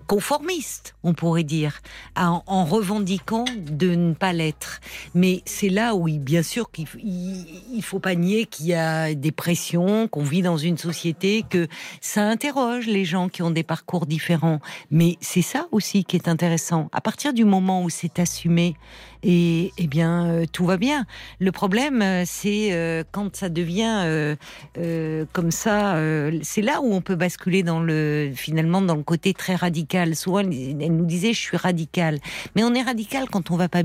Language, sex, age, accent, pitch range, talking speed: French, female, 50-69, French, 165-205 Hz, 170 wpm